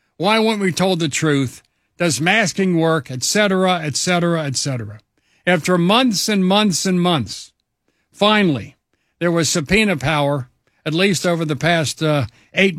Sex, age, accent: male, 60-79, American